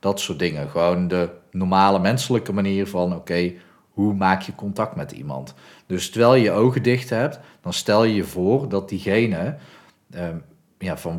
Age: 40-59